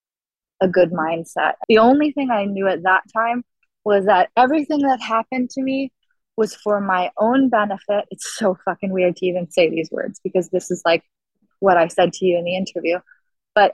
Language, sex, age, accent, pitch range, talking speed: English, female, 20-39, American, 195-245 Hz, 195 wpm